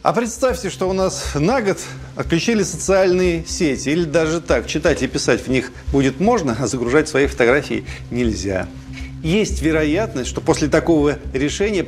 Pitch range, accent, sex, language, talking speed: 110-145 Hz, native, male, Russian, 155 wpm